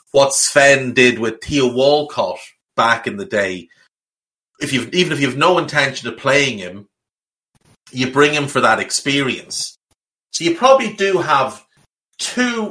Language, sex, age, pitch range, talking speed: English, male, 30-49, 110-145 Hz, 155 wpm